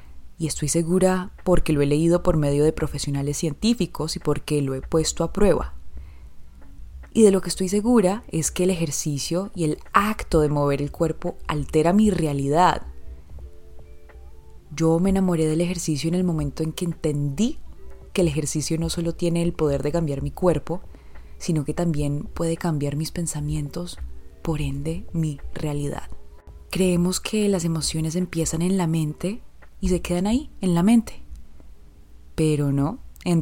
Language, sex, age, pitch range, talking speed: English, female, 20-39, 140-175 Hz, 165 wpm